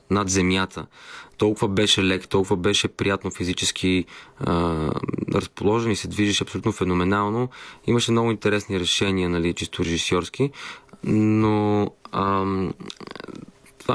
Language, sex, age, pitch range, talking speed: Bulgarian, male, 20-39, 95-110 Hz, 110 wpm